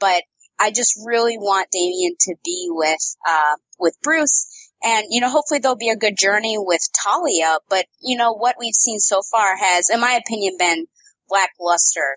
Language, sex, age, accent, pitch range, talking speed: English, female, 20-39, American, 170-230 Hz, 180 wpm